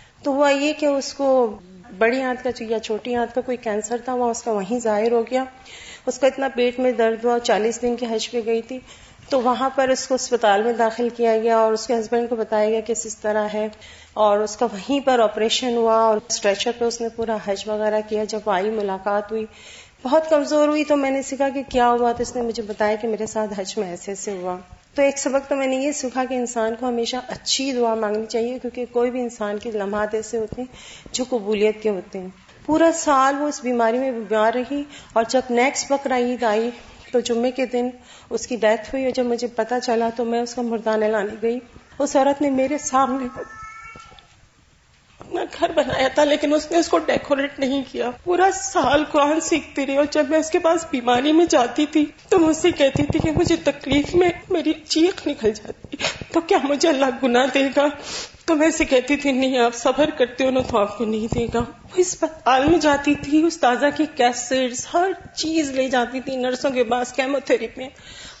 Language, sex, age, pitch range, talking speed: Urdu, female, 40-59, 230-285 Hz, 215 wpm